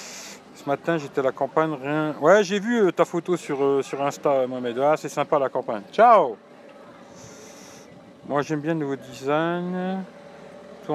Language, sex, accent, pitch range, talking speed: French, male, French, 135-175 Hz, 170 wpm